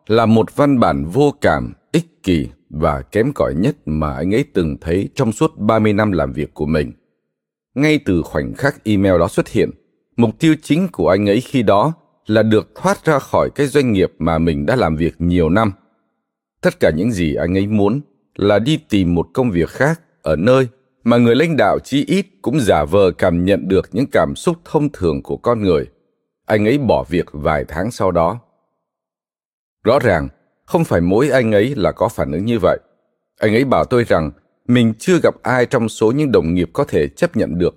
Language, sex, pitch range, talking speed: Vietnamese, male, 90-145 Hz, 210 wpm